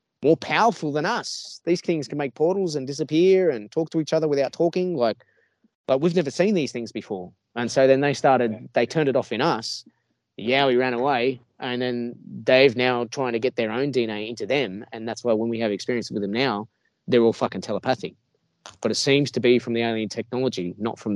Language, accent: English, Australian